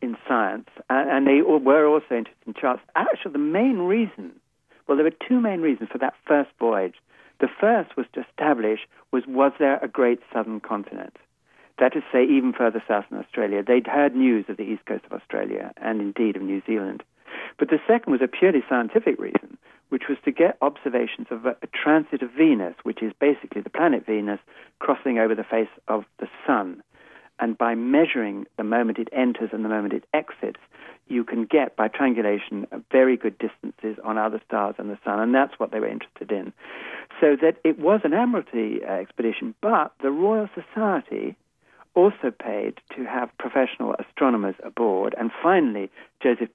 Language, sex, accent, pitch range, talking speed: English, male, British, 110-155 Hz, 185 wpm